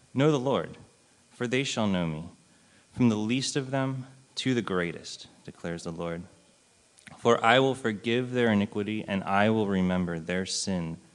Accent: American